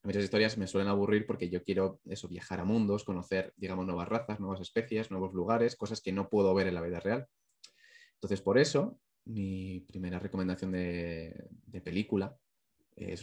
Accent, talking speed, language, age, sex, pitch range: Spanish, 175 wpm, Spanish, 20-39, male, 95-115 Hz